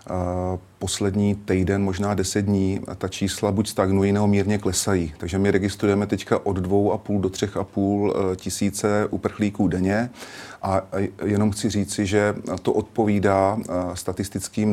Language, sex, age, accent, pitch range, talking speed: Czech, male, 30-49, native, 95-105 Hz, 155 wpm